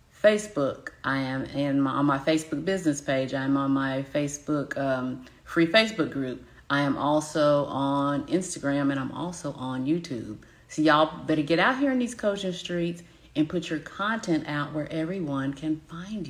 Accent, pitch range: American, 140-165 Hz